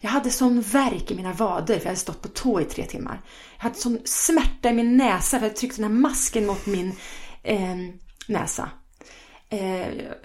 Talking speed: 205 wpm